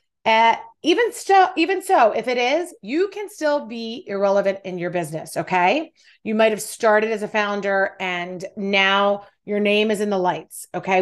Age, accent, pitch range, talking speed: 30-49, American, 195-255 Hz, 175 wpm